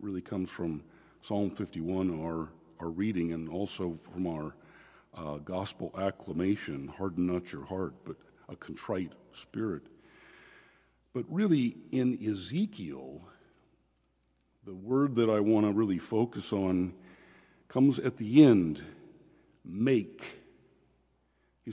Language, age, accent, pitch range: English, 50-69, American, 80-120 Hz